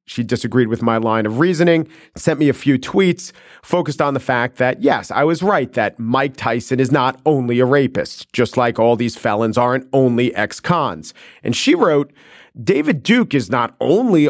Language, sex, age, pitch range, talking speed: English, male, 40-59, 120-155 Hz, 190 wpm